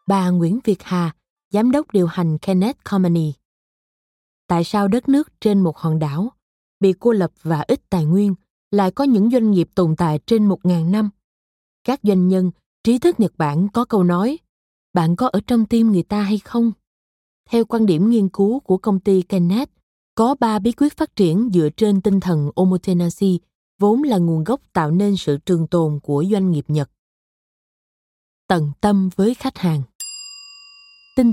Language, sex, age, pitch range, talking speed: Vietnamese, female, 20-39, 170-220 Hz, 180 wpm